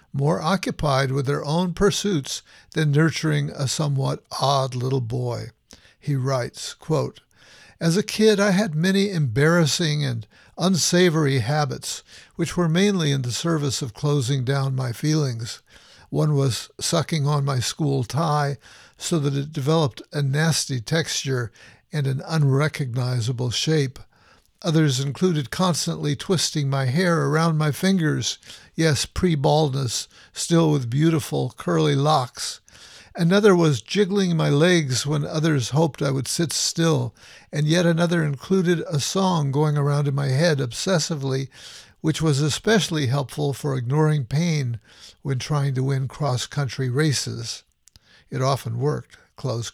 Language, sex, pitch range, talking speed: English, male, 135-165 Hz, 135 wpm